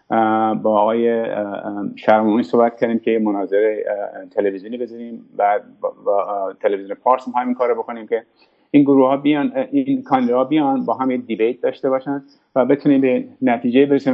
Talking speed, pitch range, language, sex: 150 wpm, 110-150 Hz, English, male